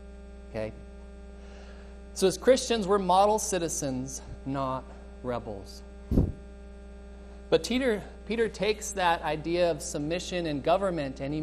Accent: American